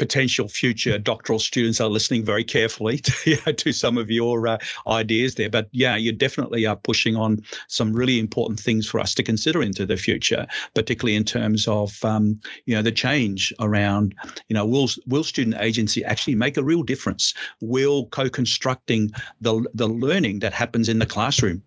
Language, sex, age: English, male, 50-69